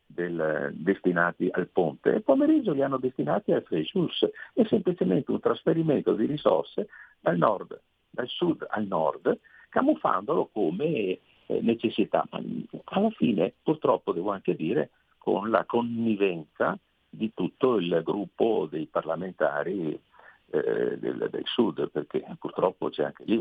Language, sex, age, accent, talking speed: Italian, male, 50-69, native, 130 wpm